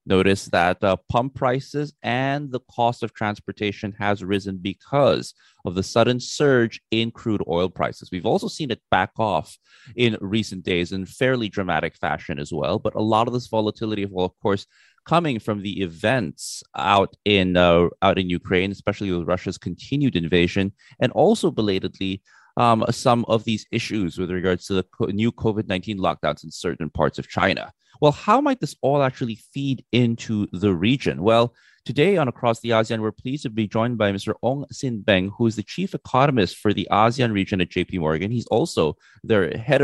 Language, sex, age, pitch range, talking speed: English, male, 30-49, 95-120 Hz, 185 wpm